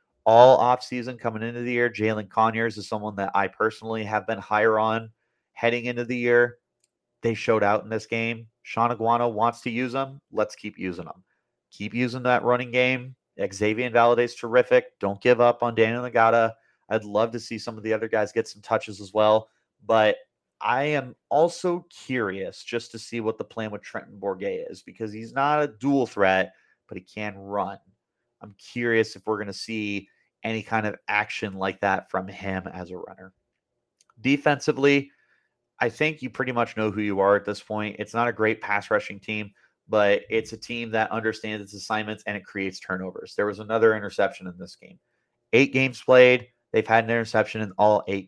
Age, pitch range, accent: 30-49, 105-125 Hz, American